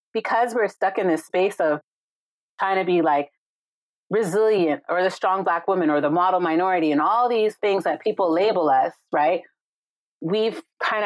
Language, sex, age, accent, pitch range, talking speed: English, female, 30-49, American, 150-185 Hz, 175 wpm